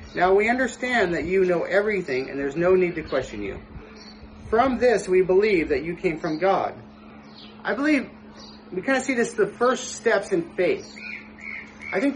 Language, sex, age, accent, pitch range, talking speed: English, male, 30-49, American, 175-225 Hz, 185 wpm